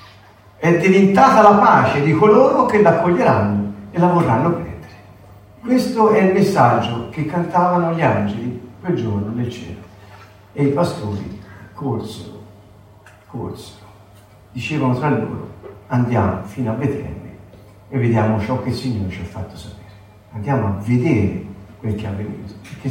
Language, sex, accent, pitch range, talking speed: Italian, male, native, 105-140 Hz, 145 wpm